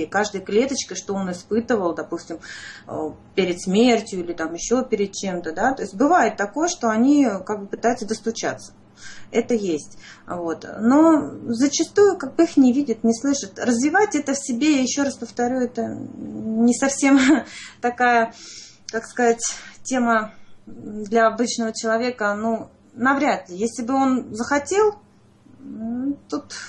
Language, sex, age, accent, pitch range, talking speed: Russian, female, 30-49, native, 190-250 Hz, 140 wpm